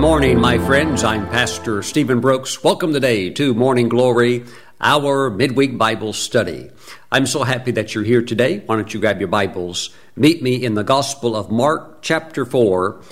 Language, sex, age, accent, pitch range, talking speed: English, male, 50-69, American, 110-135 Hz, 180 wpm